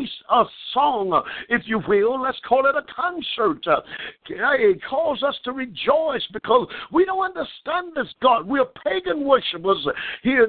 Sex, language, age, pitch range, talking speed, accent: male, English, 50-69, 245-295 Hz, 150 wpm, American